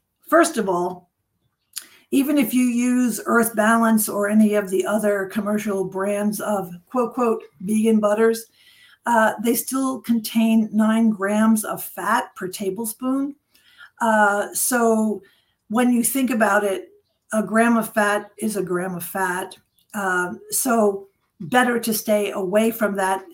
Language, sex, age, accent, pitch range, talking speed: English, female, 50-69, American, 200-230 Hz, 140 wpm